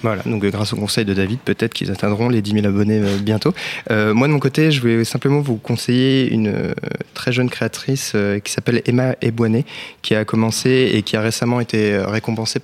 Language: French